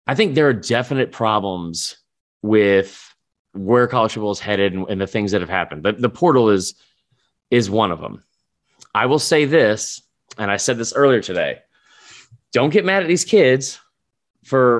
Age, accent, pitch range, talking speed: 30-49, American, 110-165 Hz, 180 wpm